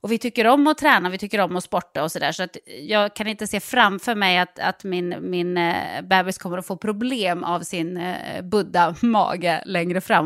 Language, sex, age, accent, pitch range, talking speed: English, female, 20-39, Swedish, 185-240 Hz, 215 wpm